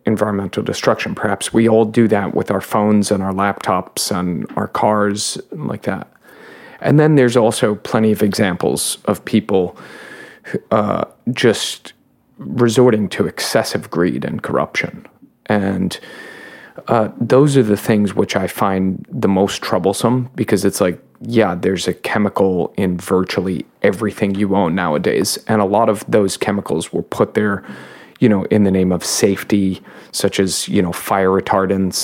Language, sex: English, male